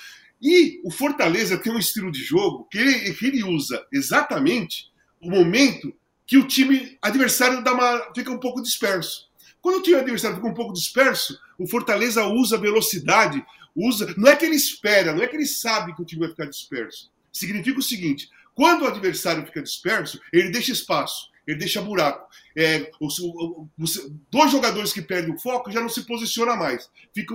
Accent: Brazilian